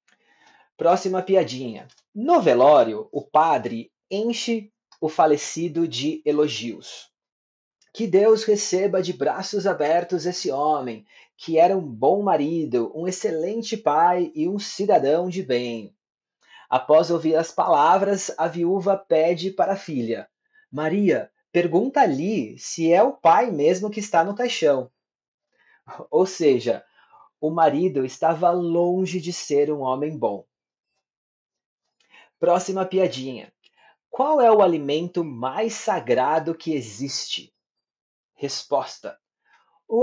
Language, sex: Portuguese, male